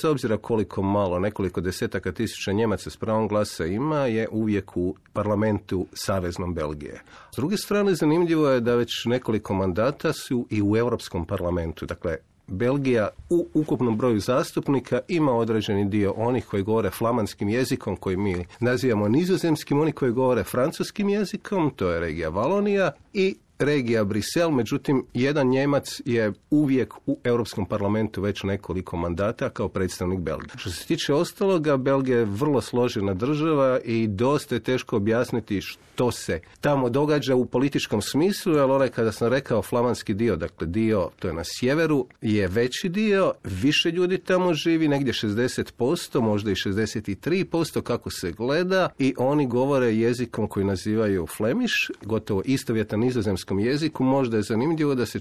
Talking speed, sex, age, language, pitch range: 155 wpm, male, 40-59, Croatian, 105-140 Hz